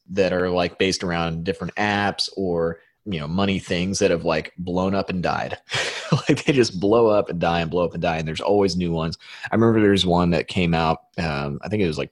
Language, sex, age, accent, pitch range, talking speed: English, male, 30-49, American, 80-95 Hz, 245 wpm